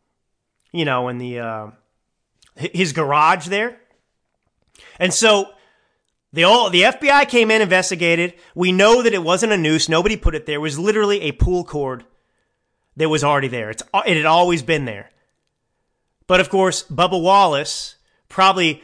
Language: English